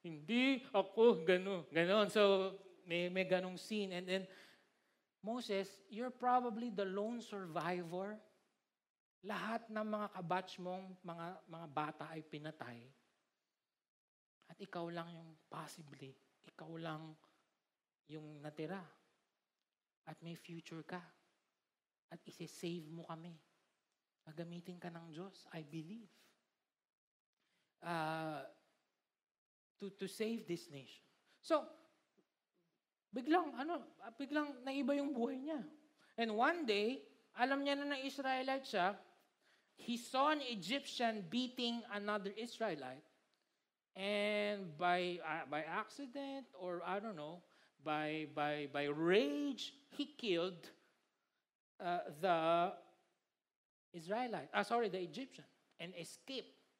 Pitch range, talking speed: 170-235 Hz, 110 wpm